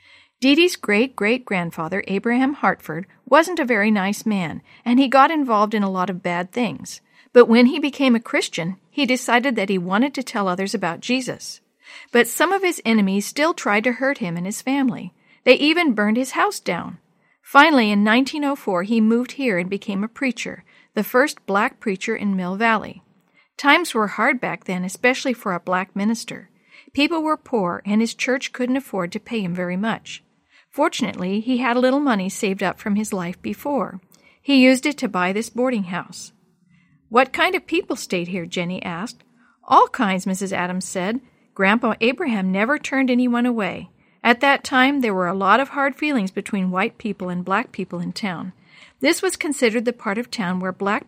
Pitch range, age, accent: 190-260 Hz, 50-69, American